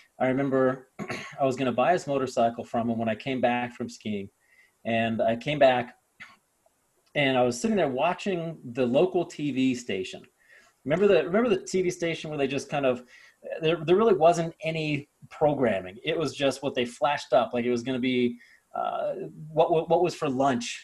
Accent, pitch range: American, 125-155 Hz